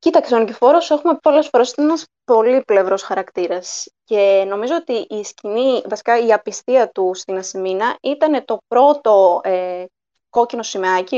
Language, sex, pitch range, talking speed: Greek, female, 195-275 Hz, 135 wpm